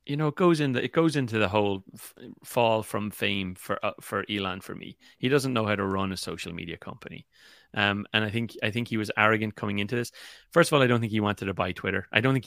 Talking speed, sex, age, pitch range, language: 275 wpm, male, 30-49, 95-115 Hz, English